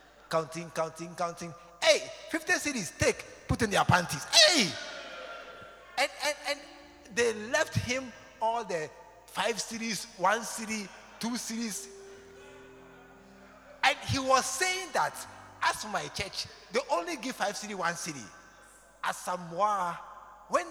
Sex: male